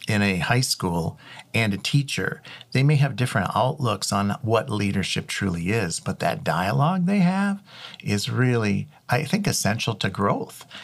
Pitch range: 100-140 Hz